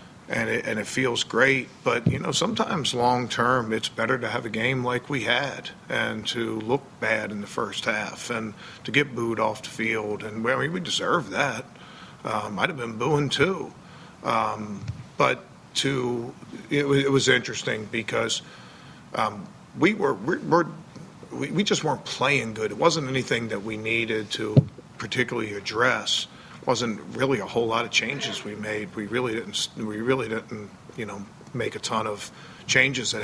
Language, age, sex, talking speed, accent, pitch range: English, 50-69, male, 180 wpm, American, 110-140 Hz